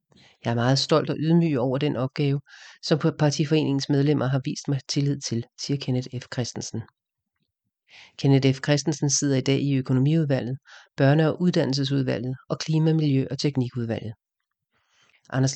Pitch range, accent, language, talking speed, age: 130-150 Hz, Danish, English, 145 wpm, 40-59